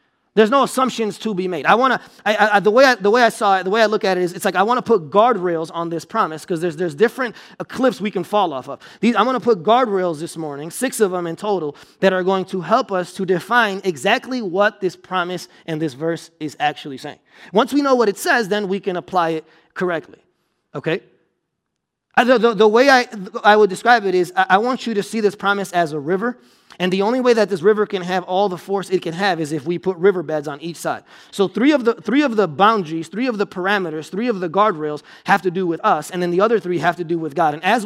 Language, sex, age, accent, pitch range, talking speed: English, male, 30-49, American, 170-220 Hz, 260 wpm